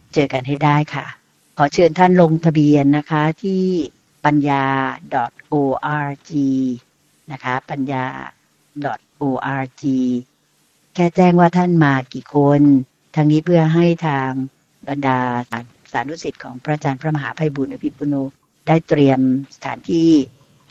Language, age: Thai, 60-79